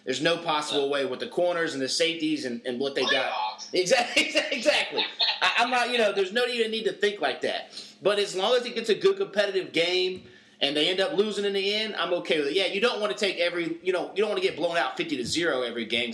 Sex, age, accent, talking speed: male, 30-49, American, 270 wpm